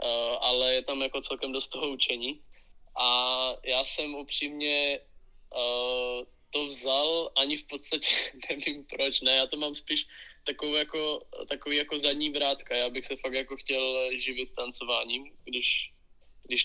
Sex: male